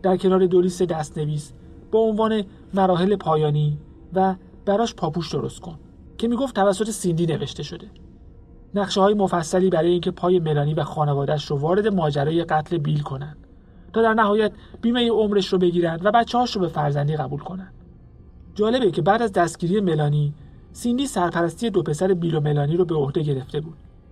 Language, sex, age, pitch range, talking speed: Persian, male, 40-59, 145-195 Hz, 170 wpm